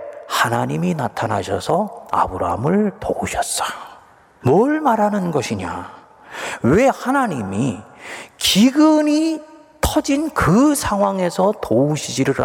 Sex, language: male, Korean